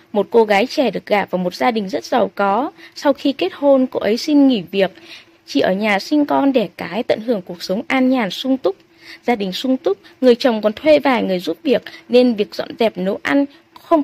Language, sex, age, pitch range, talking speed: Vietnamese, female, 20-39, 220-300 Hz, 240 wpm